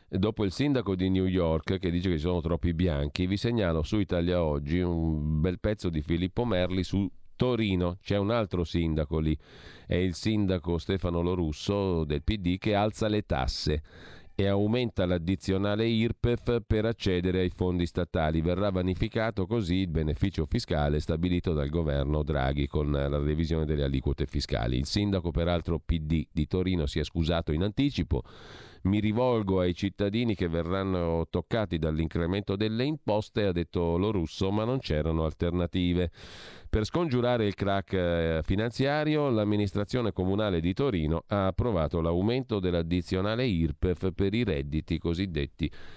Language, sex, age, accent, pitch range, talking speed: Italian, male, 40-59, native, 80-105 Hz, 150 wpm